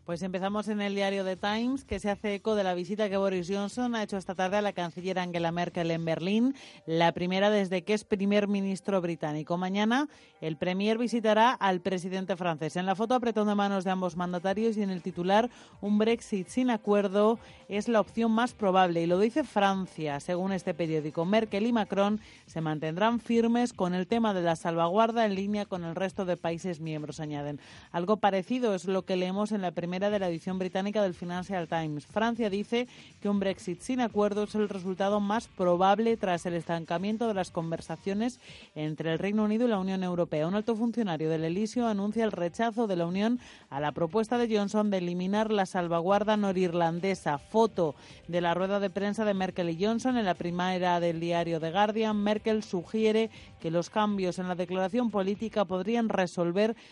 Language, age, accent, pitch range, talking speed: Spanish, 30-49, Spanish, 175-215 Hz, 195 wpm